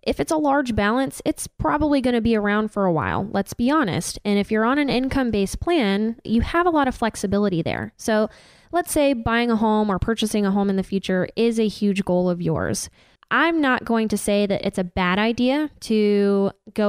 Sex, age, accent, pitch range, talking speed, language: female, 10-29, American, 195-245 Hz, 220 wpm, English